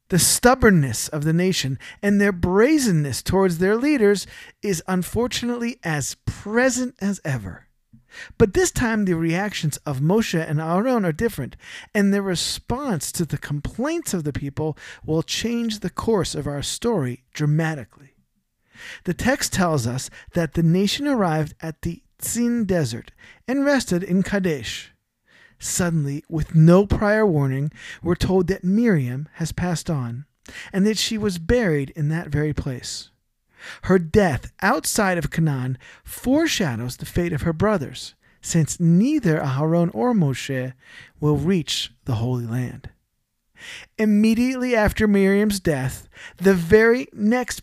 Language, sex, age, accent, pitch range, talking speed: English, male, 40-59, American, 150-215 Hz, 140 wpm